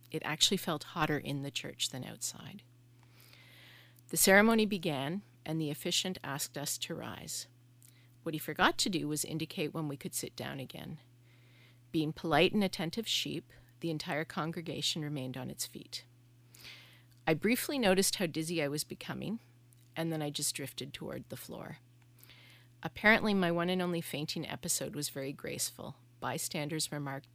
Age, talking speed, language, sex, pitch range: 40-59, 160 wpm, English, female, 125-170 Hz